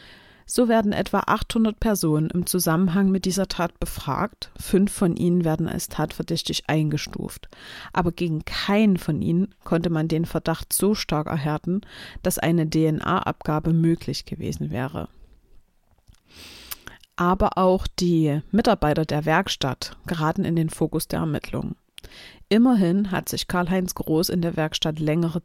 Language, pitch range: German, 160-185 Hz